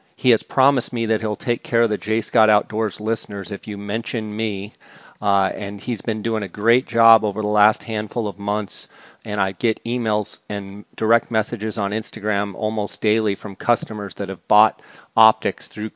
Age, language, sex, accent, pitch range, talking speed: 40-59, English, male, American, 105-120 Hz, 190 wpm